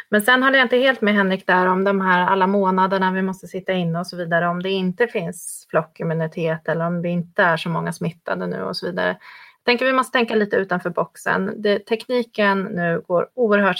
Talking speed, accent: 225 wpm, native